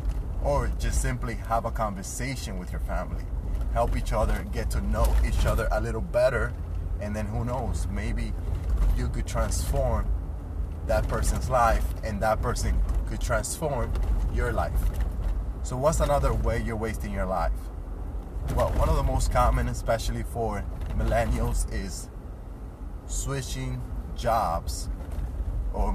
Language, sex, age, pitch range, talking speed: English, male, 30-49, 85-115 Hz, 135 wpm